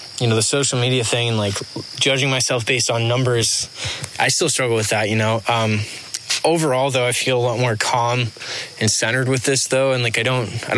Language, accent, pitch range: English, American, 110-125 Hz